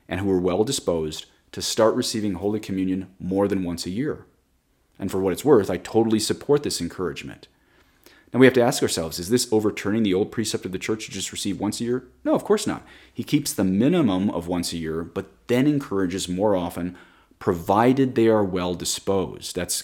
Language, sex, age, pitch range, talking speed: English, male, 30-49, 90-115 Hz, 210 wpm